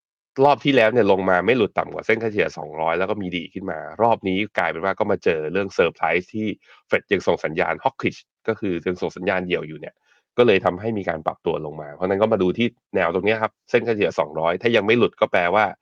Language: Thai